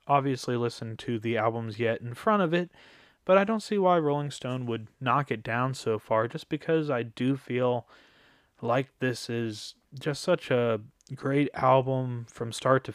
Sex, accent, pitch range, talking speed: male, American, 115-140 Hz, 180 wpm